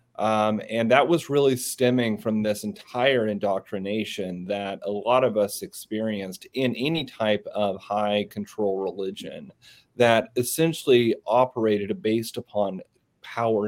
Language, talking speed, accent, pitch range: English, 125 wpm, American, 105-125 Hz